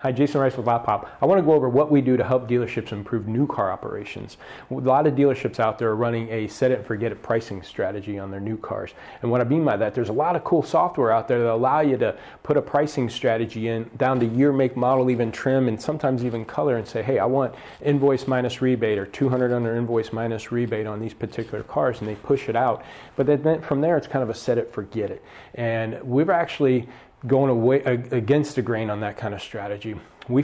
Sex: male